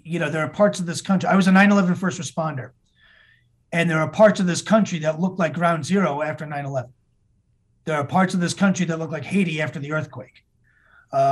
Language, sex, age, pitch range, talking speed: English, male, 30-49, 155-190 Hz, 225 wpm